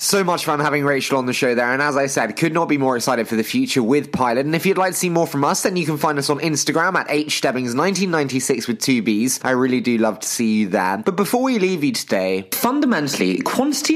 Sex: male